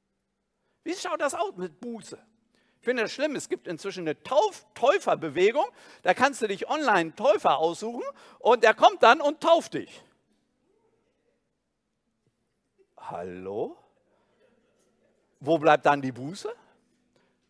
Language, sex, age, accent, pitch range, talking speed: German, male, 50-69, German, 170-275 Hz, 120 wpm